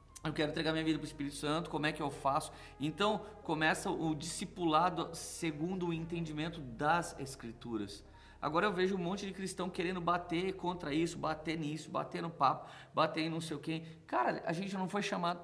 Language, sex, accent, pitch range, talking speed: Portuguese, male, Brazilian, 125-175 Hz, 200 wpm